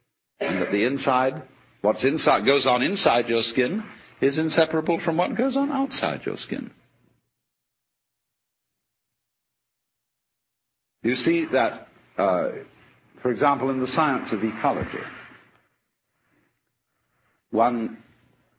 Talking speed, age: 105 wpm, 60-79